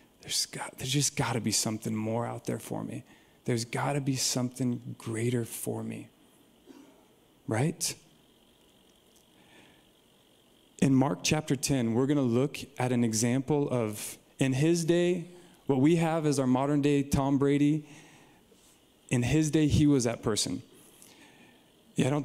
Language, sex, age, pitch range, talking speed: English, male, 20-39, 130-150 Hz, 145 wpm